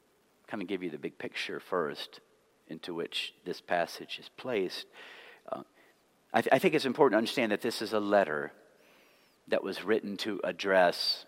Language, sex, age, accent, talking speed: English, male, 50-69, American, 170 wpm